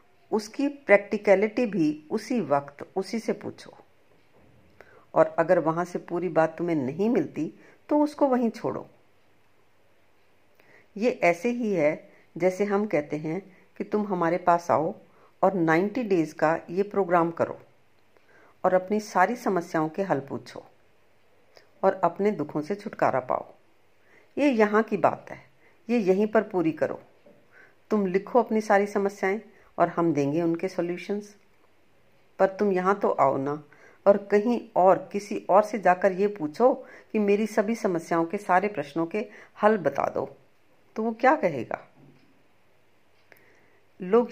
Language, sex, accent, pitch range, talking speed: Hindi, female, native, 165-215 Hz, 140 wpm